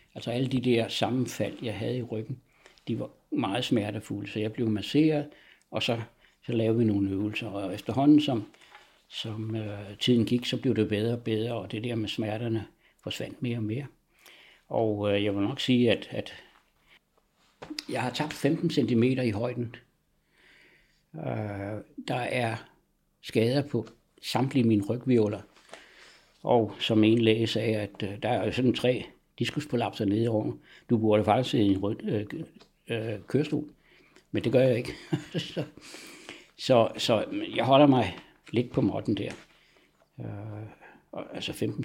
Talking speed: 160 wpm